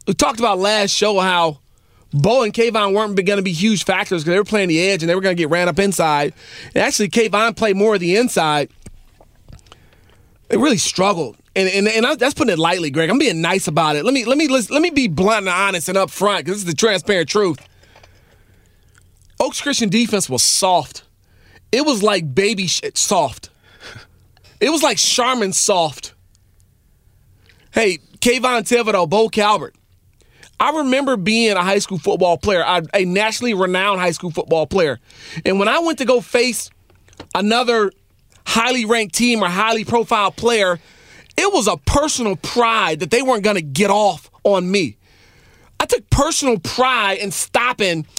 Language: English